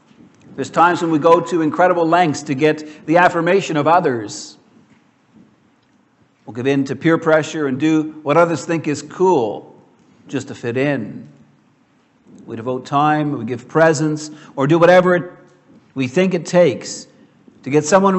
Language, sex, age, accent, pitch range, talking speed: English, male, 50-69, American, 140-180 Hz, 155 wpm